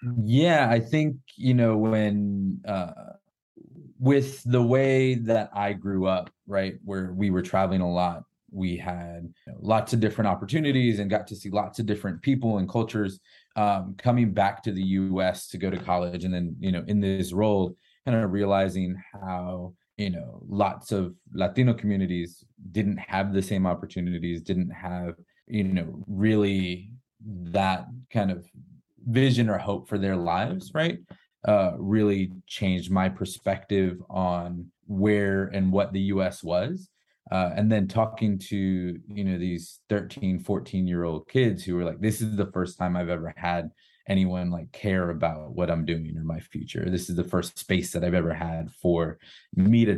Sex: male